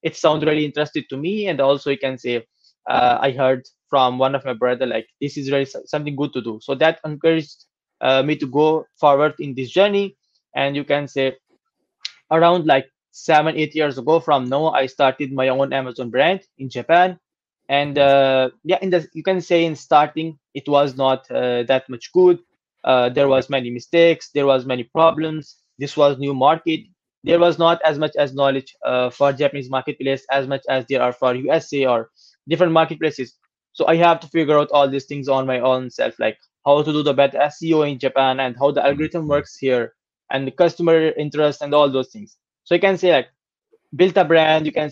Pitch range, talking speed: 135-160 Hz, 205 wpm